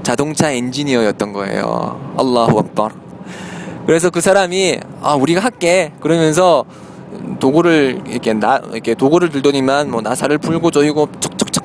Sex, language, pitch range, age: male, Korean, 140-185 Hz, 20-39